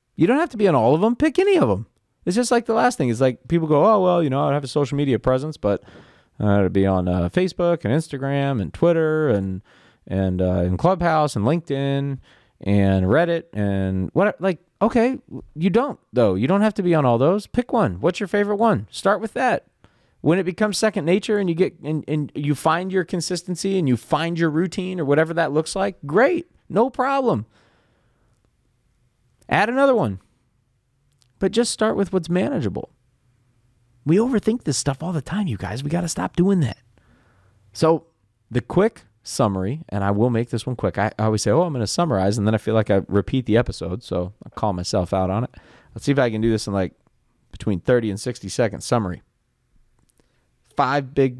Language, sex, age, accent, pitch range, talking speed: English, male, 30-49, American, 105-175 Hz, 210 wpm